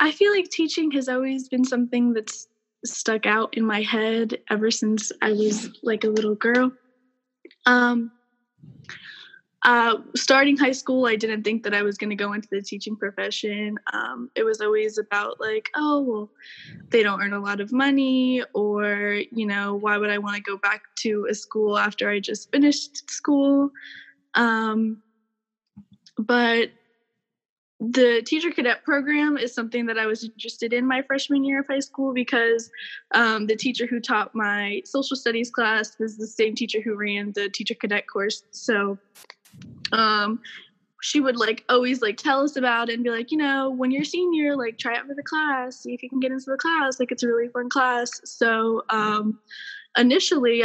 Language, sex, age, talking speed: English, female, 10-29, 180 wpm